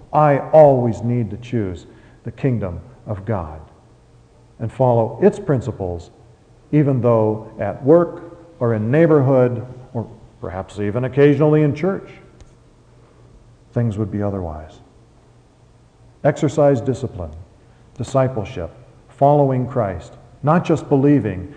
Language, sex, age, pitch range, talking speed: English, male, 50-69, 115-155 Hz, 105 wpm